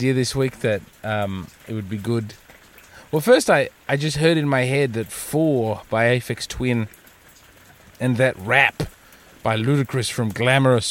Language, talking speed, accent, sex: English, 160 wpm, Australian, male